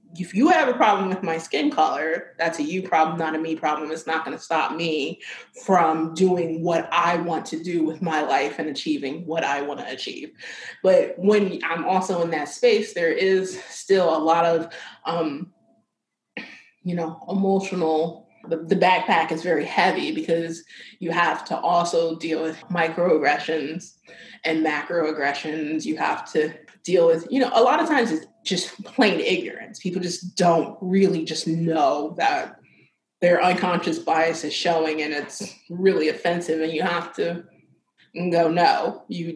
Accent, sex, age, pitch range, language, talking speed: American, female, 20-39, 160-195 Hz, English, 170 wpm